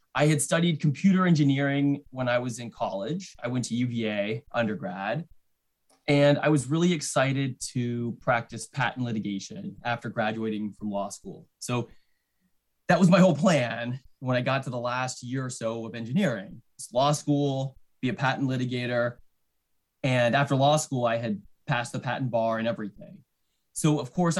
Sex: male